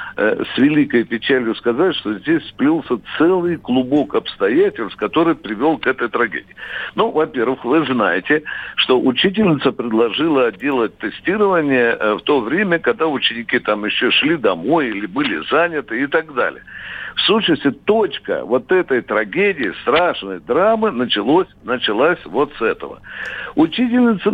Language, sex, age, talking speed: Russian, male, 60-79, 130 wpm